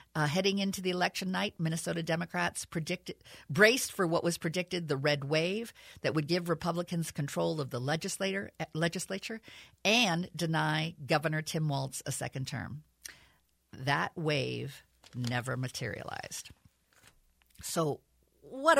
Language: English